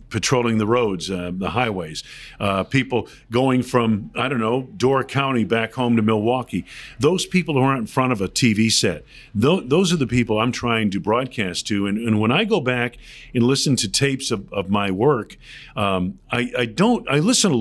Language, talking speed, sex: English, 205 wpm, male